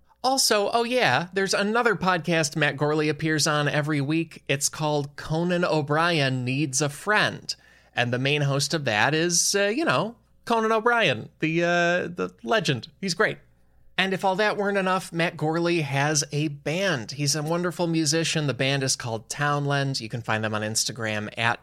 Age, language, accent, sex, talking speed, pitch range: 20-39, English, American, male, 180 wpm, 120-170 Hz